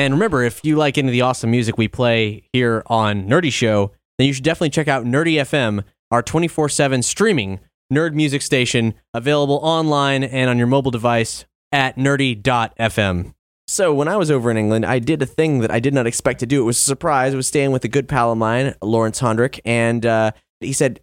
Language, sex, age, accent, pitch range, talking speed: English, male, 20-39, American, 120-150 Hz, 220 wpm